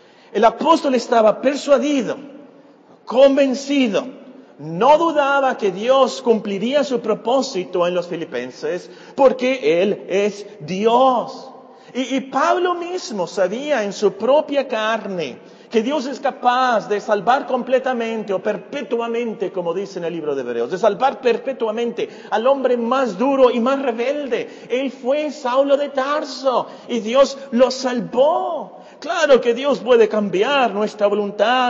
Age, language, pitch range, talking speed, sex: 40-59, Spanish, 195-270 Hz, 135 wpm, male